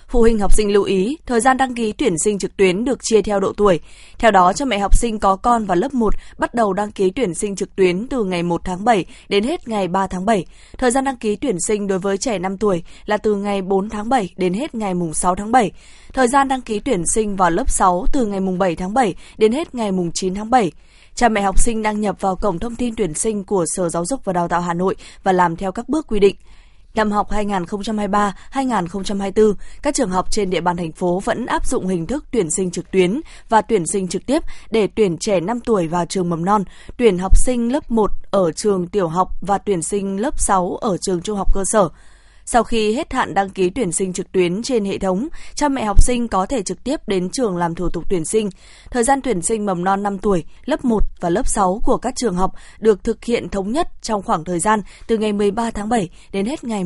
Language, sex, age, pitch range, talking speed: Vietnamese, female, 20-39, 185-230 Hz, 250 wpm